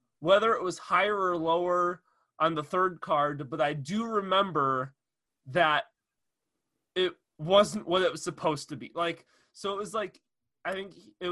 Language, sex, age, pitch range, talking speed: English, male, 20-39, 150-185 Hz, 165 wpm